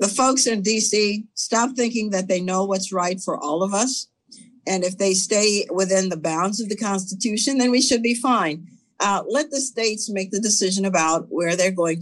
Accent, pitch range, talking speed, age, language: American, 175-225 Hz, 205 wpm, 50-69, English